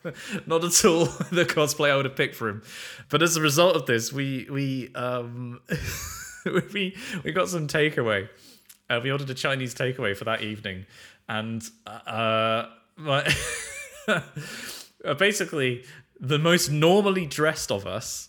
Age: 20-39